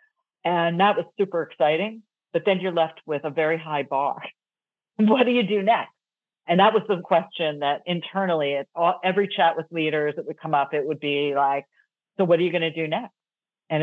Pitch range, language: 155-195 Hz, English